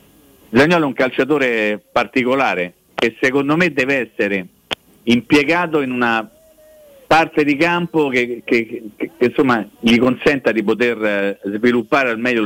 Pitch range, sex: 115-190 Hz, male